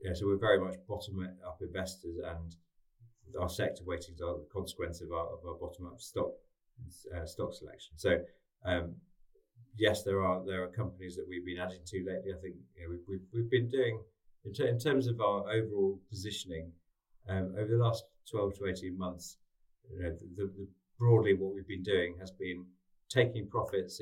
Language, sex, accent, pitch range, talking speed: English, male, British, 85-105 Hz, 190 wpm